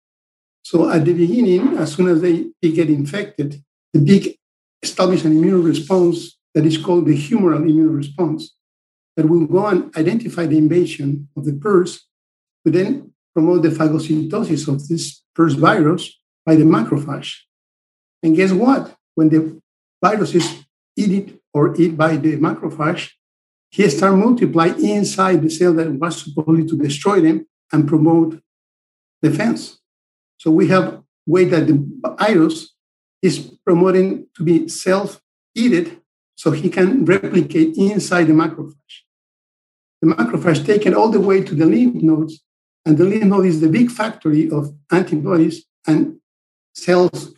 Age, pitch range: 60-79, 155-185 Hz